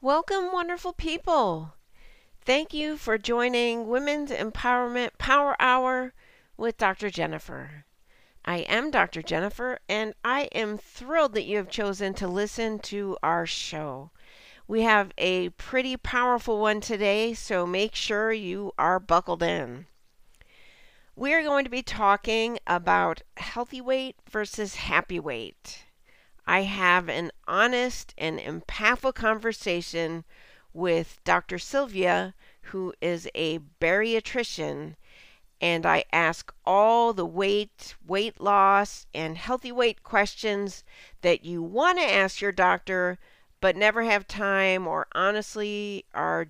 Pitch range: 175-240 Hz